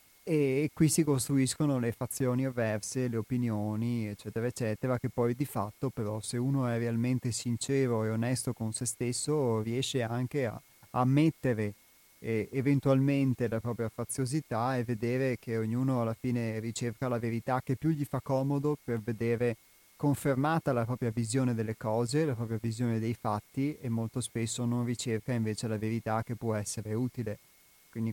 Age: 30-49